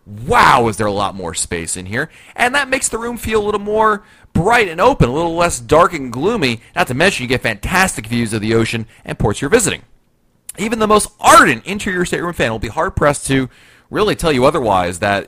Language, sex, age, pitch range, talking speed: English, male, 30-49, 100-130 Hz, 230 wpm